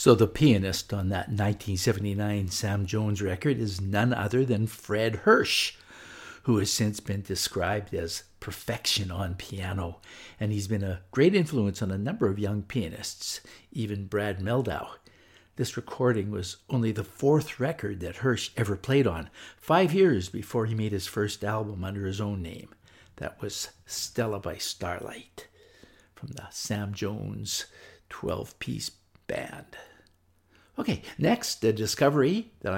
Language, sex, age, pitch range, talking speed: English, male, 60-79, 100-120 Hz, 145 wpm